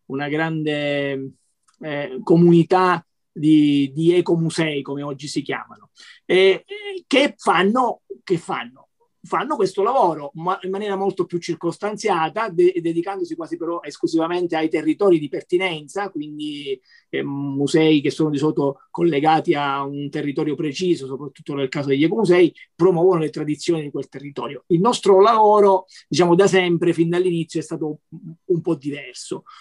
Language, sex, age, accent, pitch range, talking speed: Italian, male, 30-49, native, 160-210 Hz, 140 wpm